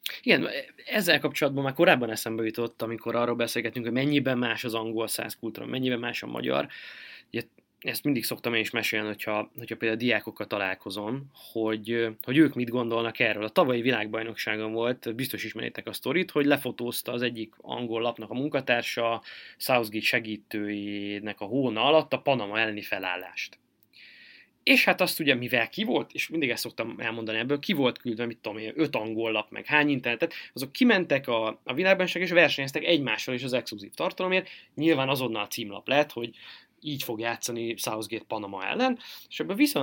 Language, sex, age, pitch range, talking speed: Hungarian, male, 20-39, 110-140 Hz, 170 wpm